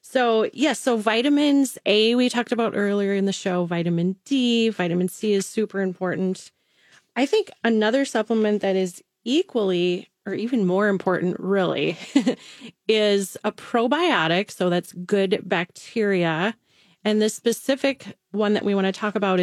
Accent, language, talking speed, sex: American, English, 150 wpm, female